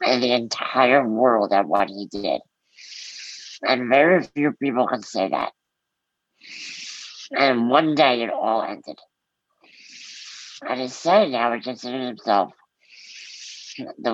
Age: 60-79